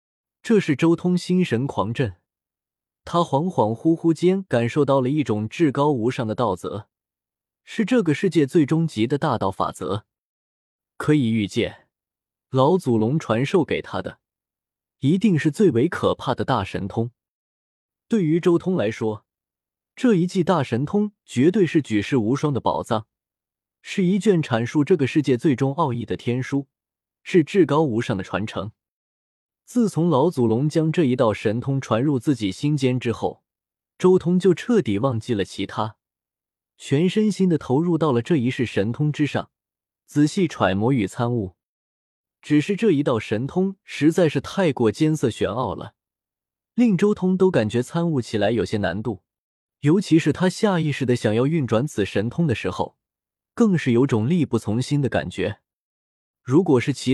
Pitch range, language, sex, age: 110-165 Hz, Chinese, male, 20-39